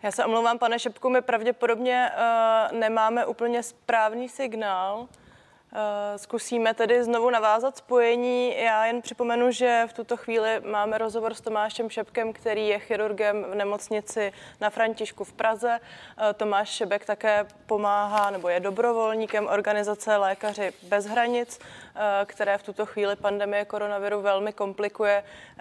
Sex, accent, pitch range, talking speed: female, native, 195-220 Hz, 130 wpm